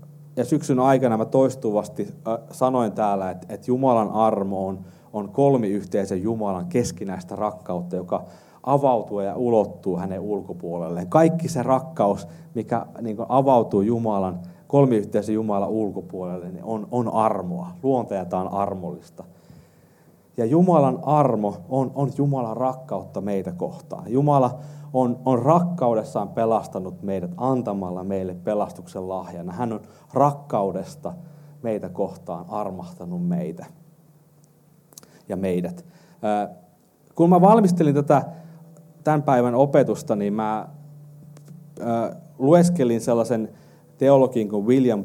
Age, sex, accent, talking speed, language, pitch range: 30-49, male, native, 100 wpm, Finnish, 100-150 Hz